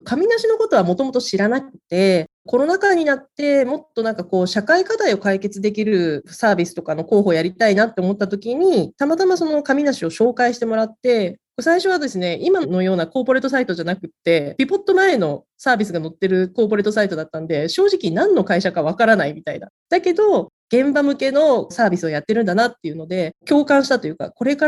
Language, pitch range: Japanese, 180-275 Hz